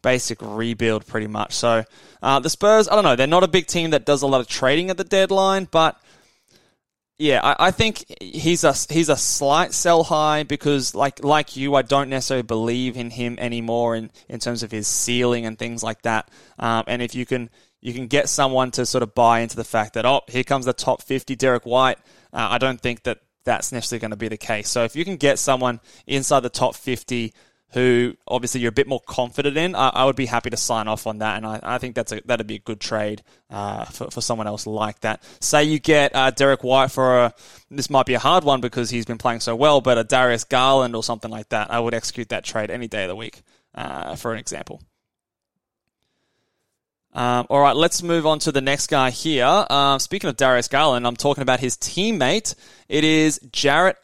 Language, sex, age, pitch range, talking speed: English, male, 20-39, 115-145 Hz, 230 wpm